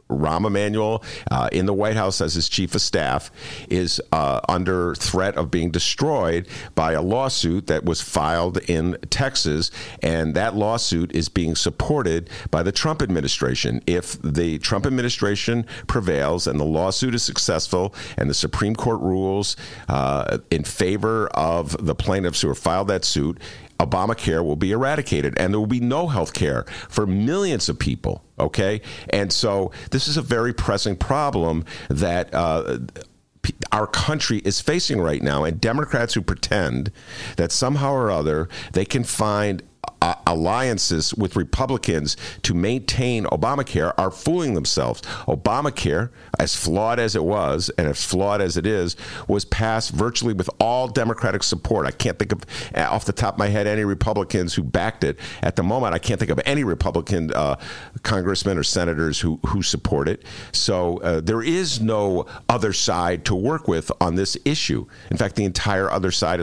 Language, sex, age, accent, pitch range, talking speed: English, male, 50-69, American, 85-115 Hz, 170 wpm